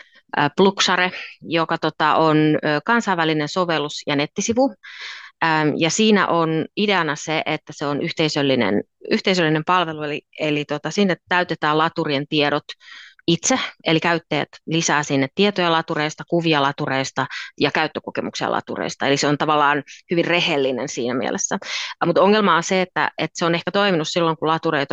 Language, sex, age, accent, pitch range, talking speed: Finnish, female, 30-49, native, 140-170 Hz, 145 wpm